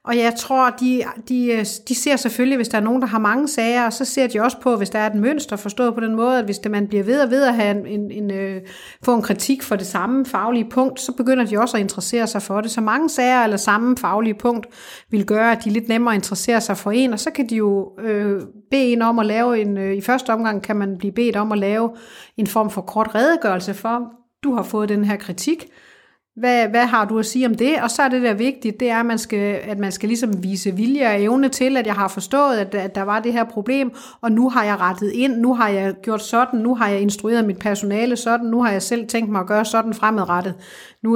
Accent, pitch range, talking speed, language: native, 205-240 Hz, 260 wpm, Danish